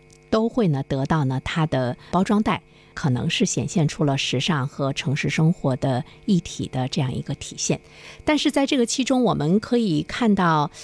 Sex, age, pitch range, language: female, 50-69, 145-195 Hz, Chinese